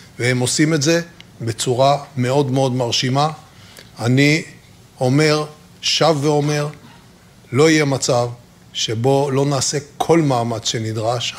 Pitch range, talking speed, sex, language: 125-150 Hz, 110 wpm, male, Hebrew